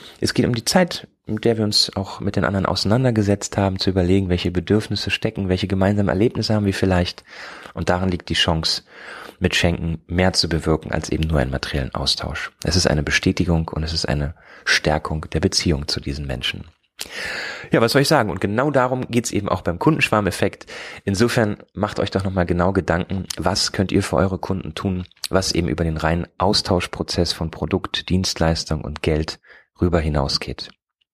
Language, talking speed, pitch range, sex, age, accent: Spanish, 185 wpm, 80-105 Hz, male, 30-49, German